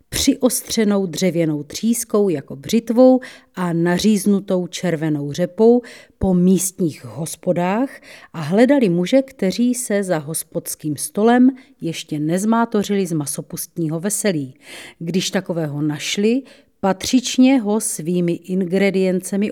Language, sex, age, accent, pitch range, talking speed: Czech, female, 40-59, native, 165-230 Hz, 100 wpm